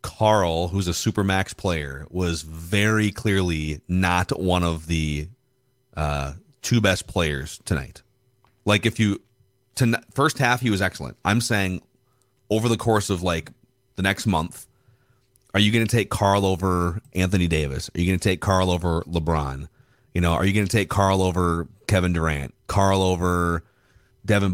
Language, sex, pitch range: English, male, 90-110 Hz